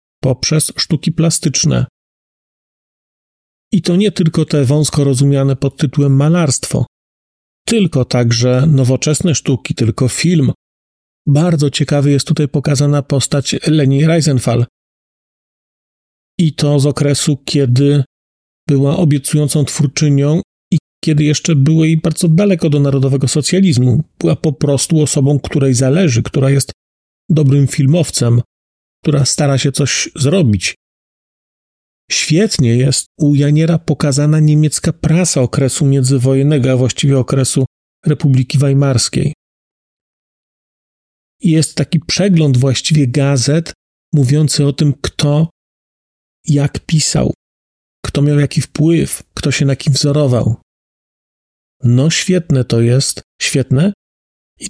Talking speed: 110 wpm